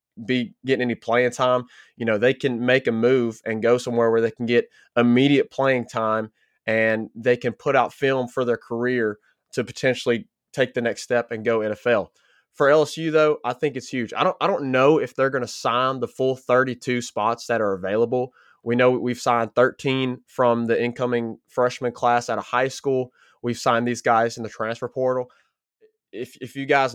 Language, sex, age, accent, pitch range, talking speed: English, male, 20-39, American, 115-130 Hz, 200 wpm